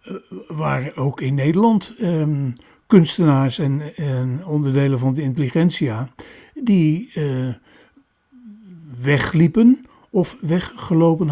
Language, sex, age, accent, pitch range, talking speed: Dutch, male, 60-79, Dutch, 130-170 Hz, 95 wpm